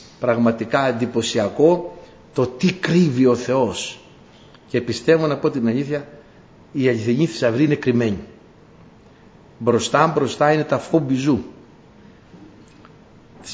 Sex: male